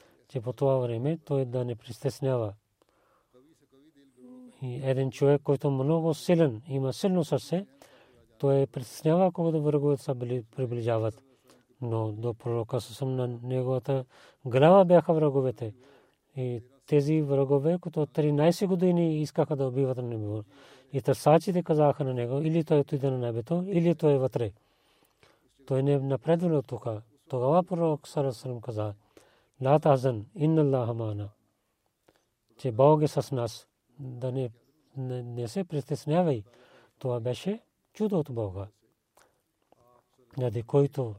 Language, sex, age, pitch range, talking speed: Bulgarian, male, 40-59, 120-150 Hz, 130 wpm